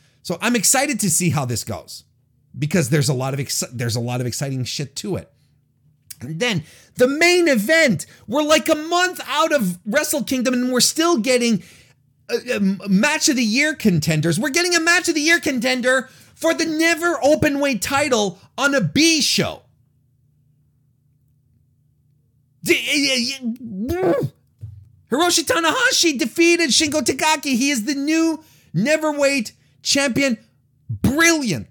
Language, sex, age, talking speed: English, male, 40-59, 155 wpm